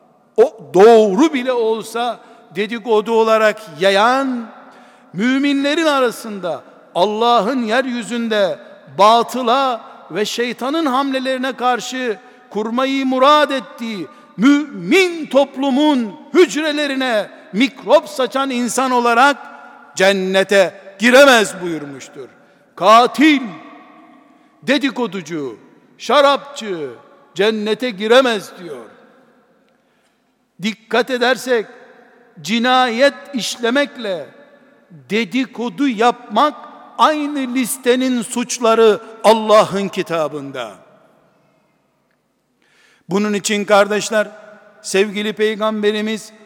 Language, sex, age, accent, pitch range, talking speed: Turkish, male, 60-79, native, 205-260 Hz, 65 wpm